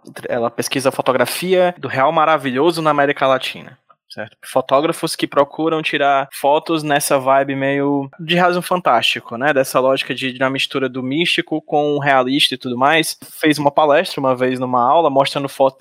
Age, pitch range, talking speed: 20-39, 135-165 Hz, 175 wpm